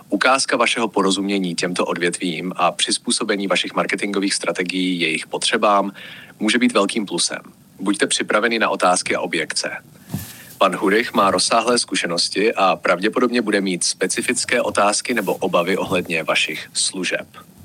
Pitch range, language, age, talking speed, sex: 90-110 Hz, Czech, 40-59, 130 wpm, male